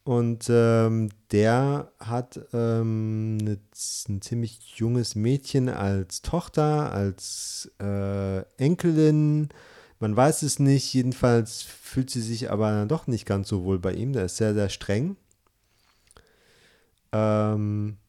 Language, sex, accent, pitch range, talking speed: German, male, German, 105-135 Hz, 120 wpm